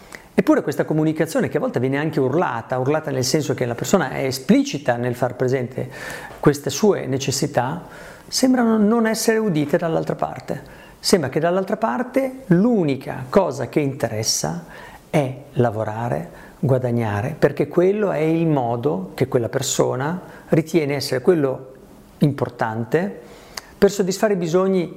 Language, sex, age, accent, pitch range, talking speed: Italian, male, 50-69, native, 135-175 Hz, 135 wpm